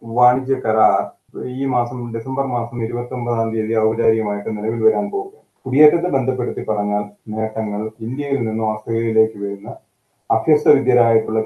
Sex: male